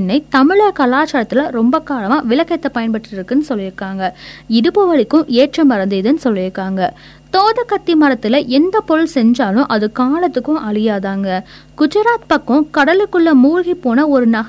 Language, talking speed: Tamil, 45 wpm